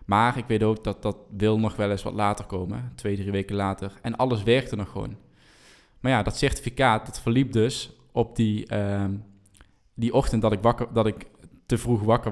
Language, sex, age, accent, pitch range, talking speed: Dutch, male, 20-39, Dutch, 100-115 Hz, 205 wpm